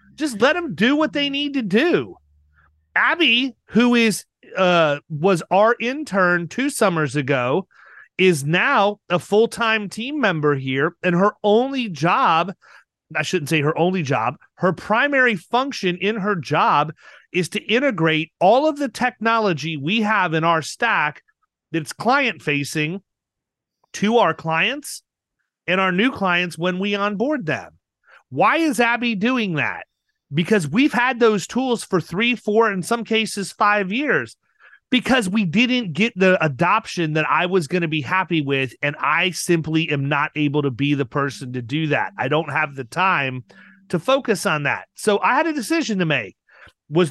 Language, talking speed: English, 165 wpm